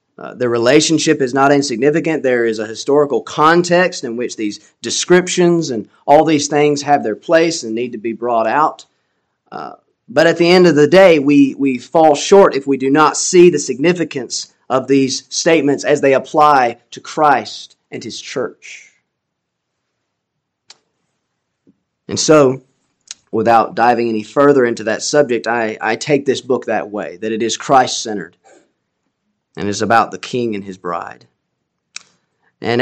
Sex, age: male, 30-49